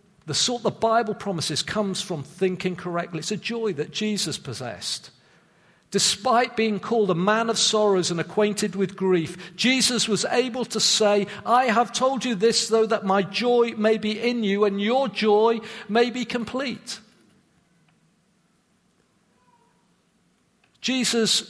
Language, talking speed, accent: English, 140 wpm, British